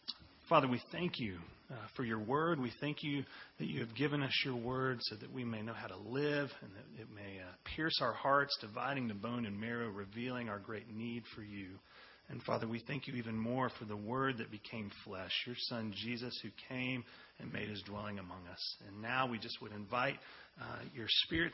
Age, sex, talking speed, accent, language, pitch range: 40-59, male, 215 wpm, American, English, 105-135 Hz